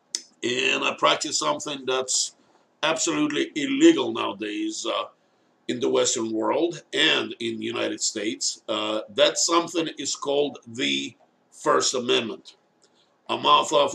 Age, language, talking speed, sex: 50-69, English, 125 wpm, male